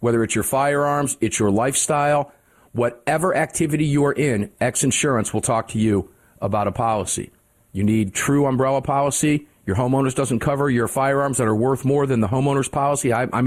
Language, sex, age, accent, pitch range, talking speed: English, male, 50-69, American, 105-135 Hz, 185 wpm